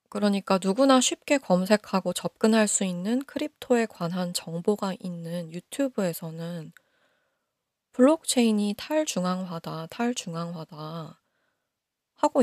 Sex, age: female, 20-39